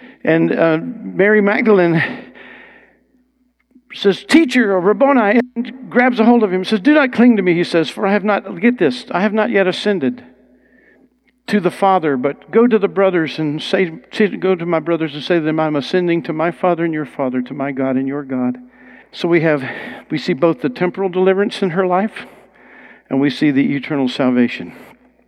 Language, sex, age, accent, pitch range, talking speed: English, male, 60-79, American, 135-205 Hz, 200 wpm